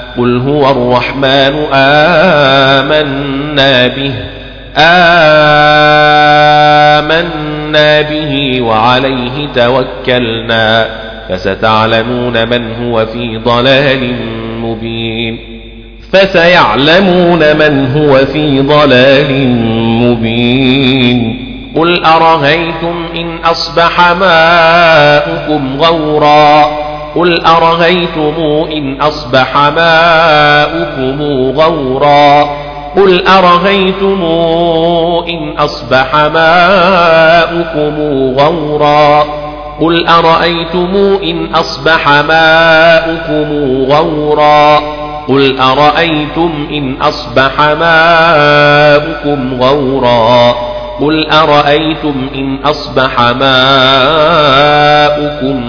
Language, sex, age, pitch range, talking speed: Arabic, male, 40-59, 130-160 Hz, 60 wpm